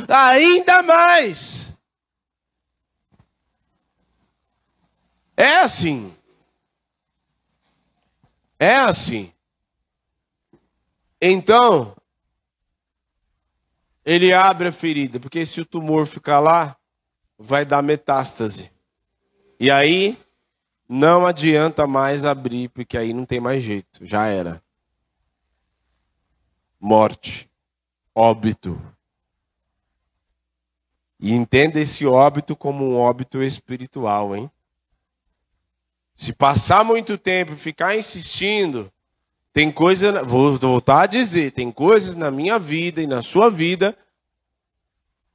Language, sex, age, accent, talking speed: Portuguese, male, 40-59, Brazilian, 90 wpm